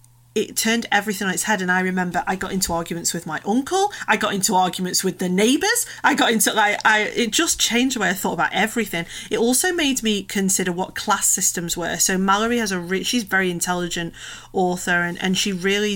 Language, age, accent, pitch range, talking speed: English, 30-49, British, 175-210 Hz, 225 wpm